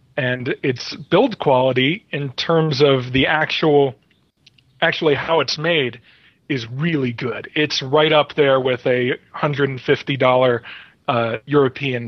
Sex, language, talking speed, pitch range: male, English, 125 wpm, 130-155 Hz